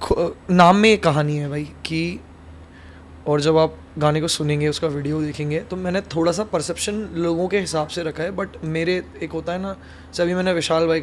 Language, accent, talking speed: Hindi, native, 205 wpm